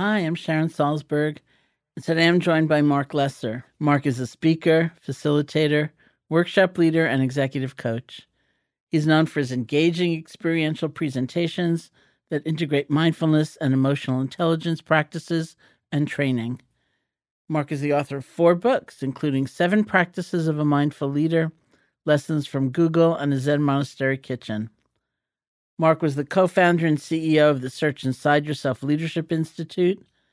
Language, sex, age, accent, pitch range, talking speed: English, male, 50-69, American, 135-160 Hz, 140 wpm